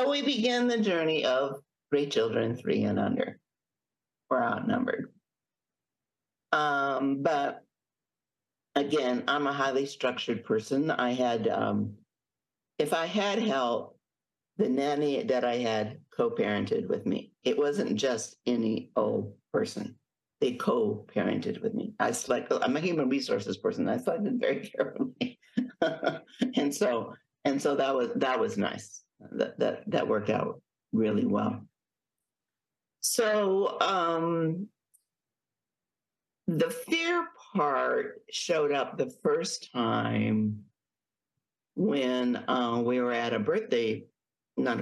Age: 50-69